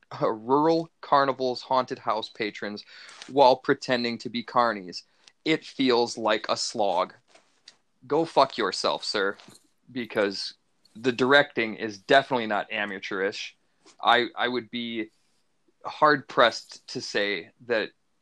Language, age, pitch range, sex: English, 30-49, 115-140 Hz, male